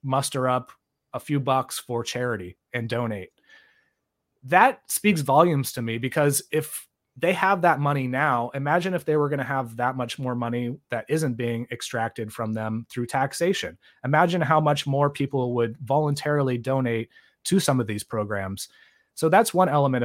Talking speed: 170 wpm